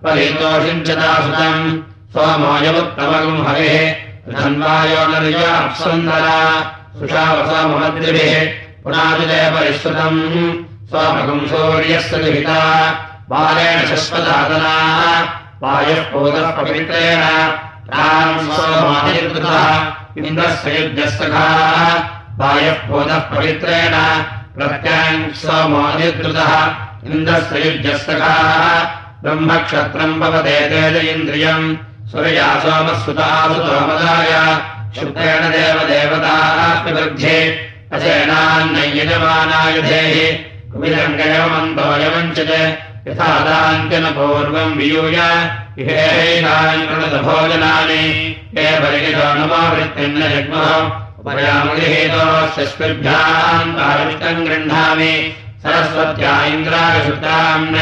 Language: Russian